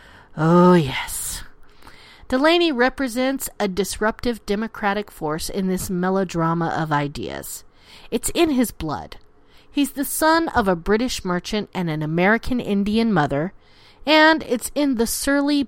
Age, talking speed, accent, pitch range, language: 40-59, 130 wpm, American, 185-280 Hz, English